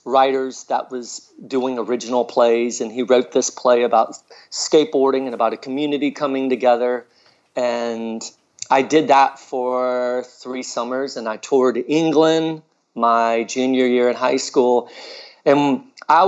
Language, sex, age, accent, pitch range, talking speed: English, male, 40-59, American, 120-135 Hz, 140 wpm